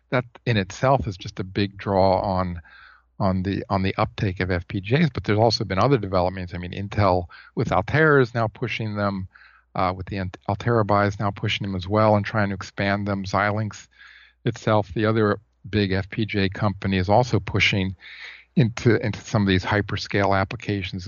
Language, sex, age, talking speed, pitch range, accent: English, male, 50-69, 180 wpm, 95-115 Hz, American